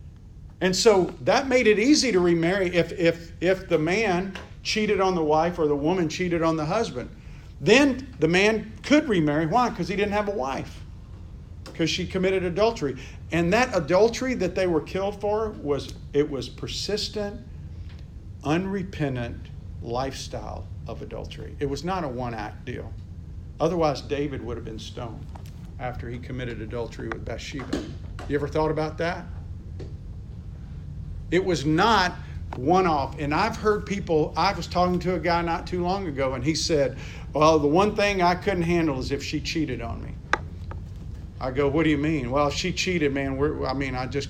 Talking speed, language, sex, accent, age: 175 wpm, English, male, American, 50-69